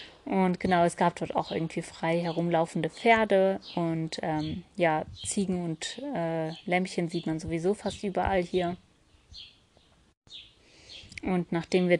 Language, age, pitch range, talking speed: German, 30-49, 170-190 Hz, 130 wpm